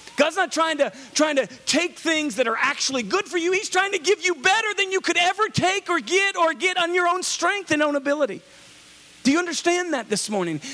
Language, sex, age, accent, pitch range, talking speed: English, male, 40-59, American, 190-300 Hz, 230 wpm